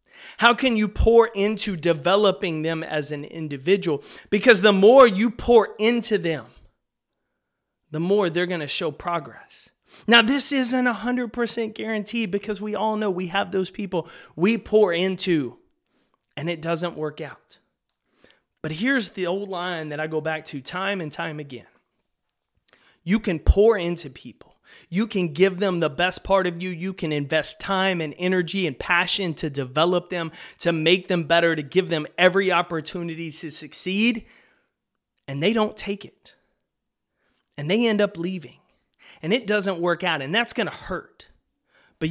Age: 30-49